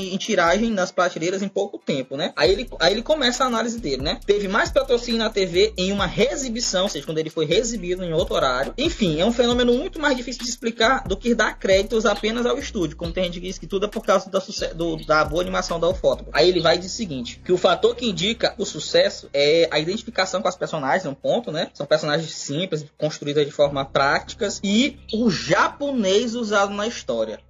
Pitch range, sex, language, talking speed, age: 155-225 Hz, male, Portuguese, 230 wpm, 20-39